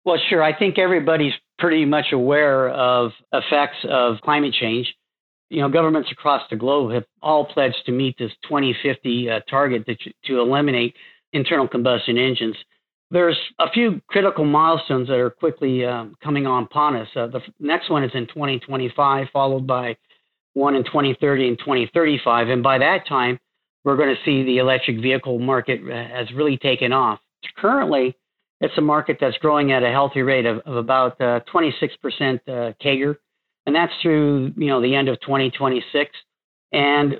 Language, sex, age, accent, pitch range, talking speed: English, male, 50-69, American, 125-150 Hz, 170 wpm